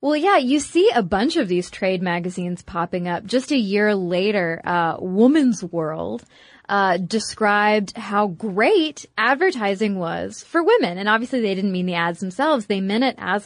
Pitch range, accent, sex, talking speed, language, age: 185-230 Hz, American, female, 175 wpm, English, 20-39